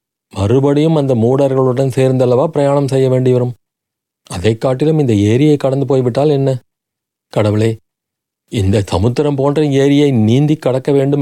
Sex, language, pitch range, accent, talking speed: male, Tamil, 115-140 Hz, native, 125 wpm